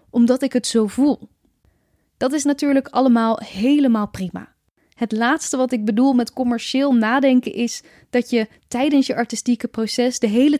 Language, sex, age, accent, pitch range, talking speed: Dutch, female, 10-29, Dutch, 215-270 Hz, 160 wpm